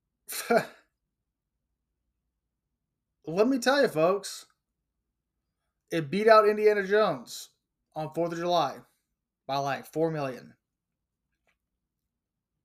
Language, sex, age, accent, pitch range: English, male, 20-39, American, 135-195 Hz